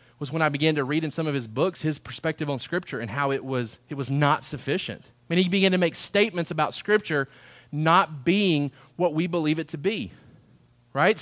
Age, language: 30-49, English